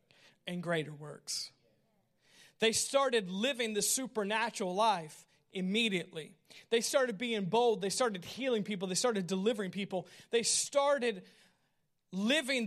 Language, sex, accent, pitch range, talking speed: English, male, American, 165-230 Hz, 120 wpm